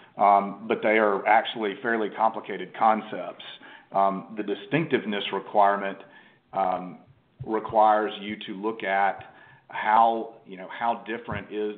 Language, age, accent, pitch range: English, 40-59, American, 95-115 Hz